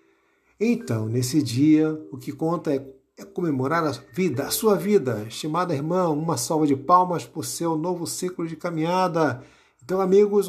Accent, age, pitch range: Brazilian, 60-79, 145-190 Hz